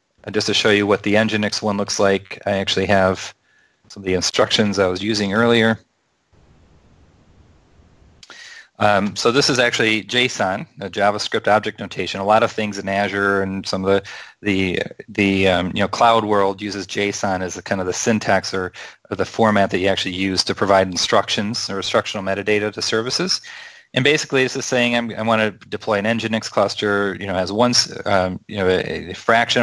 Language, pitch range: English, 95-115 Hz